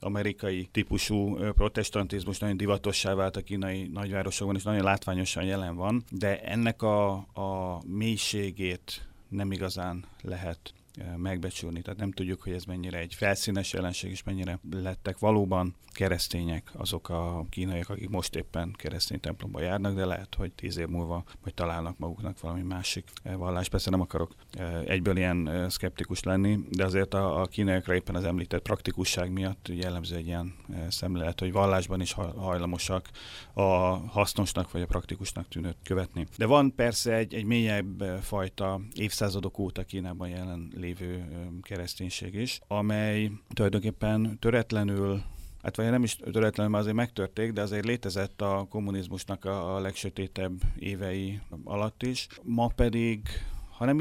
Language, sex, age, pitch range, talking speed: Hungarian, male, 30-49, 90-105 Hz, 140 wpm